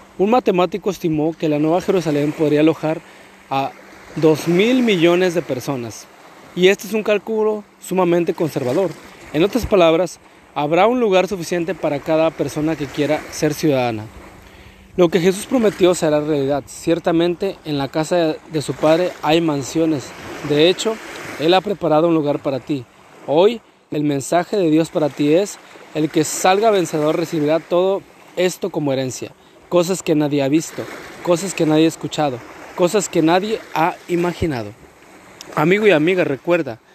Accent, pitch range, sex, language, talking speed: Mexican, 145-180 Hz, male, Spanish, 155 wpm